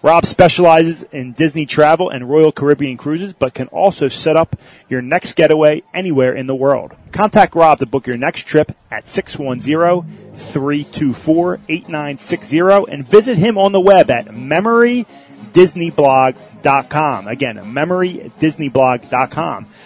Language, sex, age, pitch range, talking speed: English, male, 30-49, 150-190 Hz, 120 wpm